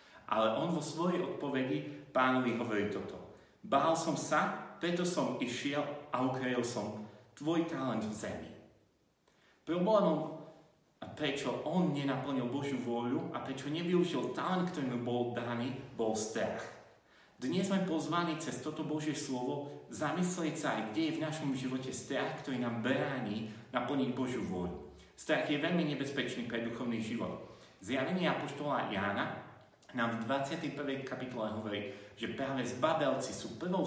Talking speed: 140 wpm